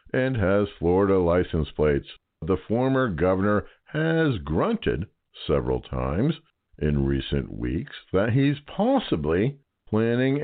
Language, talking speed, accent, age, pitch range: English, 110 wpm, American, 60-79, 80-115 Hz